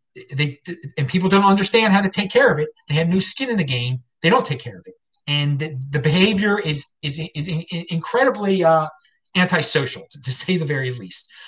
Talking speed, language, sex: 210 wpm, English, male